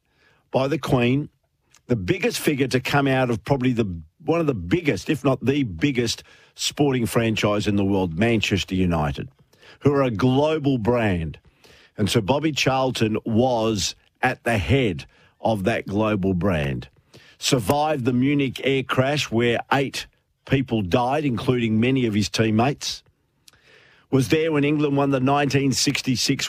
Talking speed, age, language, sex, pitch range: 145 wpm, 50-69, English, male, 105-140 Hz